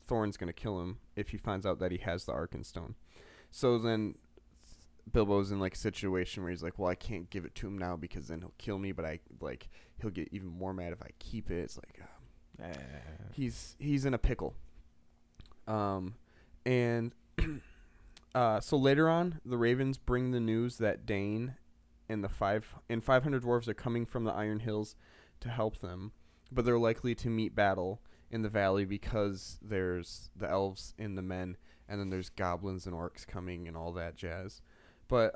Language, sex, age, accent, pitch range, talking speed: English, male, 20-39, American, 85-110 Hz, 190 wpm